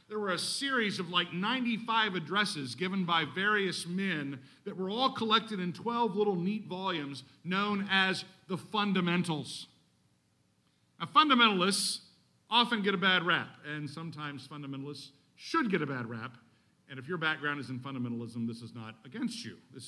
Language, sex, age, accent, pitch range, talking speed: English, male, 50-69, American, 125-195 Hz, 160 wpm